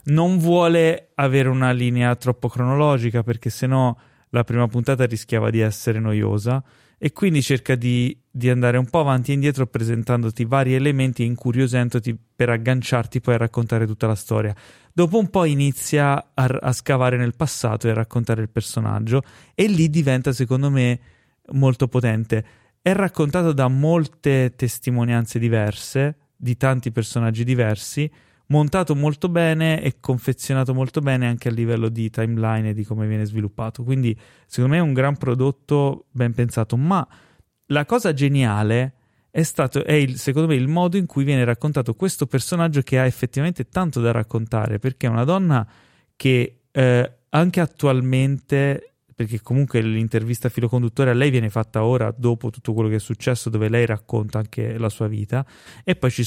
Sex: male